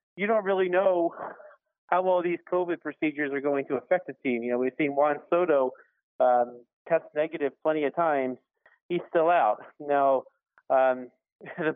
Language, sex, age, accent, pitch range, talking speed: English, male, 40-59, American, 130-165 Hz, 170 wpm